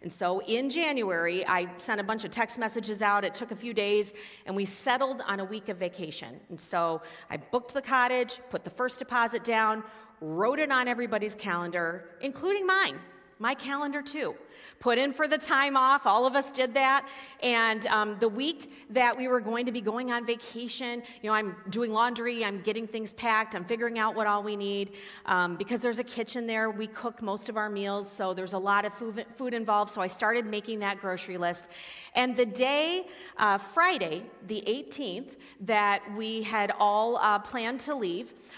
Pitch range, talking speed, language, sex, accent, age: 200-250 Hz, 200 wpm, English, female, American, 40-59